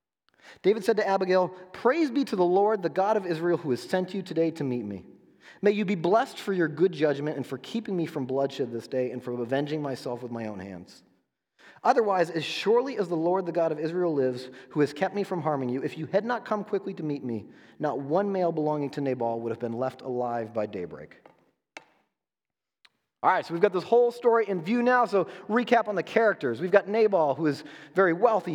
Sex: male